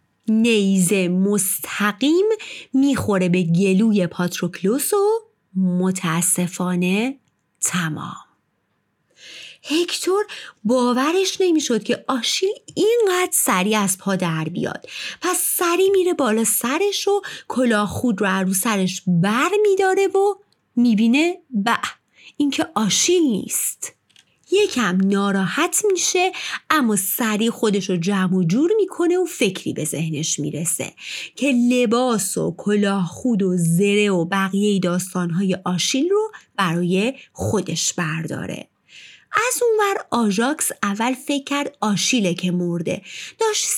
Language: Persian